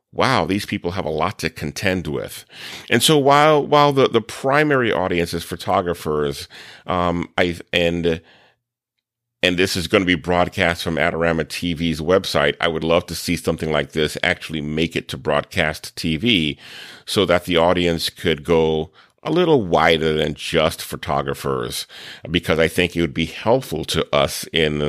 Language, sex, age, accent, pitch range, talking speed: English, male, 40-59, American, 80-95 Hz, 165 wpm